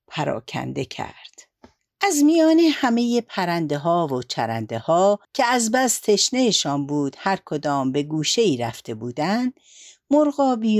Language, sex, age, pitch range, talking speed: Persian, female, 60-79, 155-240 Hz, 110 wpm